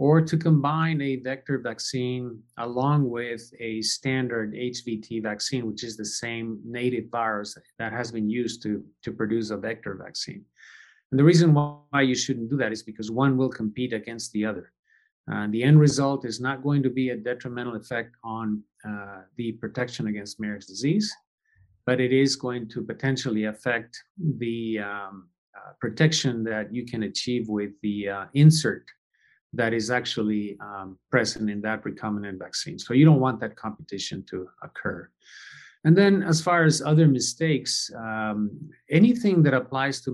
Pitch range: 110-130 Hz